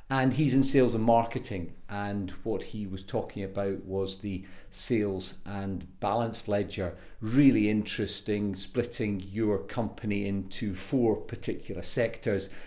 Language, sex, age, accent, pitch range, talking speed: English, male, 50-69, British, 95-110 Hz, 130 wpm